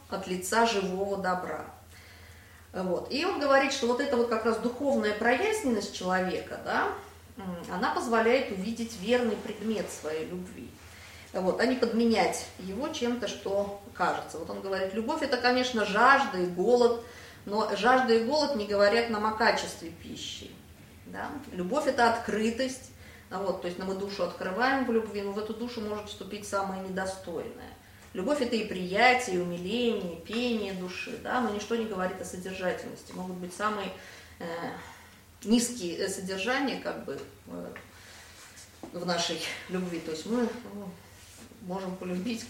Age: 30-49